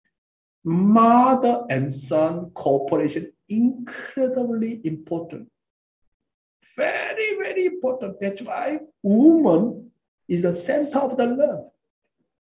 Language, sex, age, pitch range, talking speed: English, male, 60-79, 120-175 Hz, 85 wpm